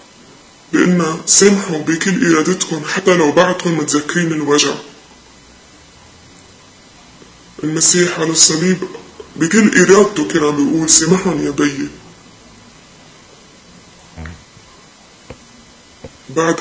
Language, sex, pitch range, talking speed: Arabic, female, 150-175 Hz, 75 wpm